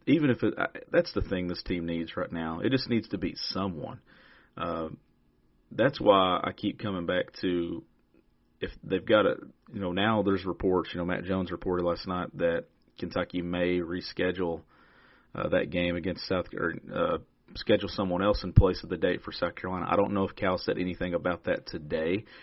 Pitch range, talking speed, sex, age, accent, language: 85-100 Hz, 190 wpm, male, 40-59, American, English